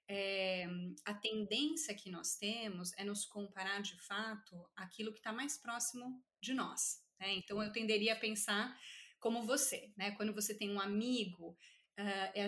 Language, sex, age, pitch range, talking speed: Portuguese, female, 30-49, 190-240 Hz, 155 wpm